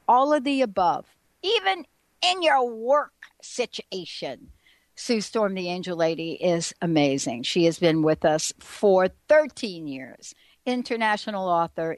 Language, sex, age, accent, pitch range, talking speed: English, female, 60-79, American, 170-245 Hz, 130 wpm